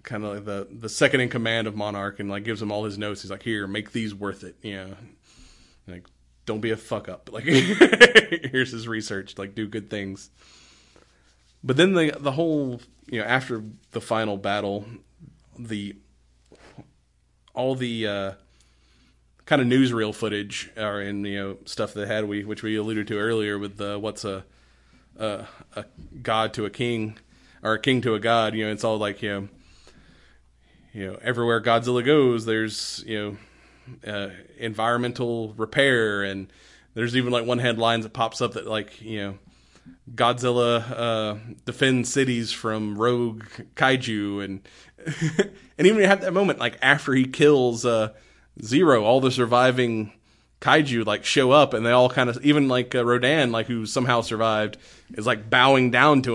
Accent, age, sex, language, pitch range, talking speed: American, 30-49, male, English, 100-125 Hz, 175 wpm